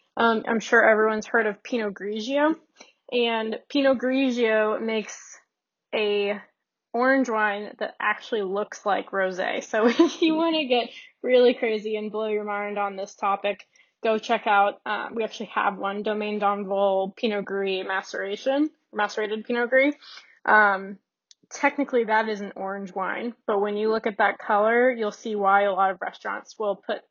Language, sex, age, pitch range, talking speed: English, female, 10-29, 205-245 Hz, 165 wpm